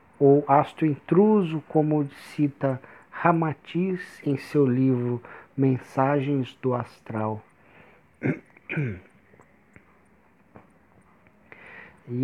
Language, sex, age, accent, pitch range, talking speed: Portuguese, male, 50-69, Brazilian, 130-180 Hz, 65 wpm